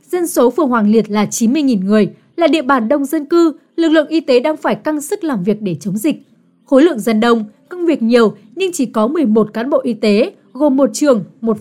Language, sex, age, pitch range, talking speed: Vietnamese, female, 20-39, 225-300 Hz, 240 wpm